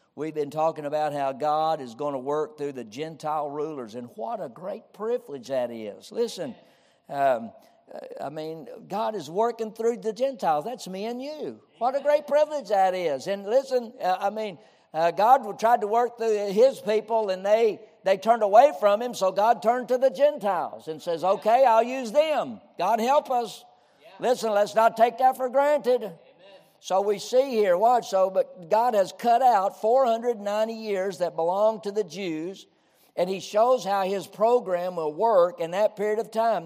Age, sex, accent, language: 60-79, male, American, English